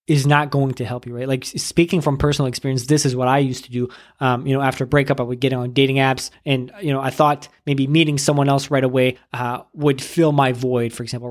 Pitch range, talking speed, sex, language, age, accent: 130-150 Hz, 260 wpm, male, English, 20-39, American